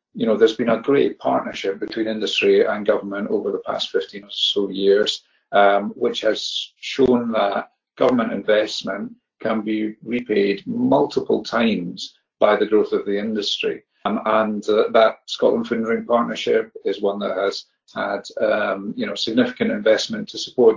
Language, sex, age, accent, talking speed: English, male, 40-59, British, 160 wpm